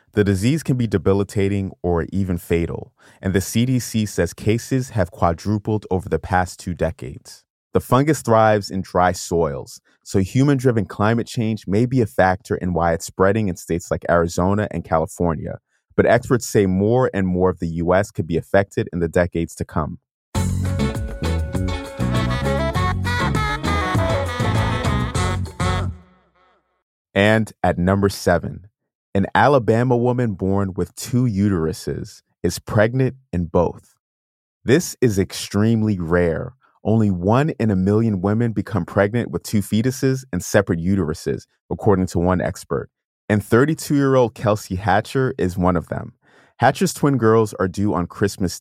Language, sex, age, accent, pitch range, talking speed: English, male, 30-49, American, 90-115 Hz, 140 wpm